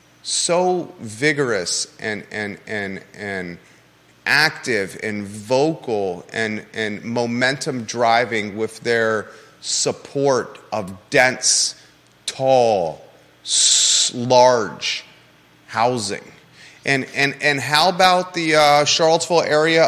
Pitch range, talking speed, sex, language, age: 125-165 Hz, 90 wpm, male, English, 30-49